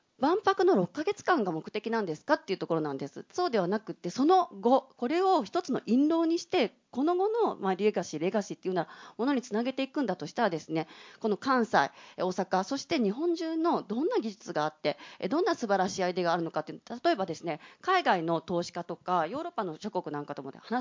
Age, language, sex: 40-59, Japanese, female